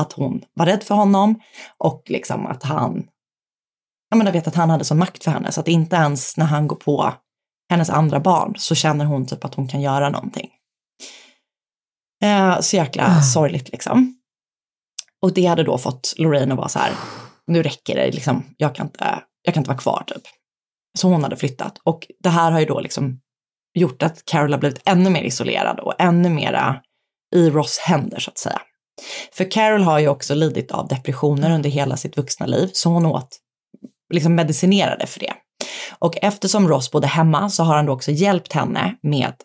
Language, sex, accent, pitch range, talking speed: Swedish, female, native, 145-180 Hz, 195 wpm